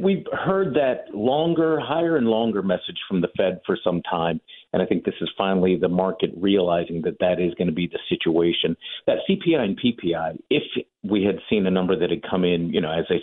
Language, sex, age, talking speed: English, male, 50-69, 220 wpm